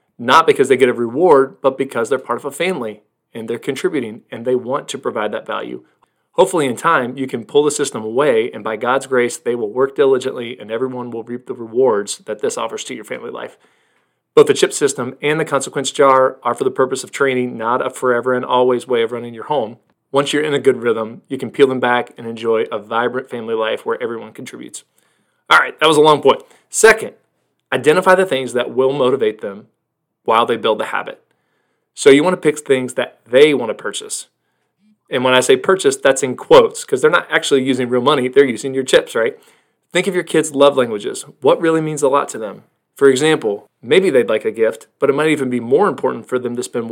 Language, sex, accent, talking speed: English, male, American, 230 wpm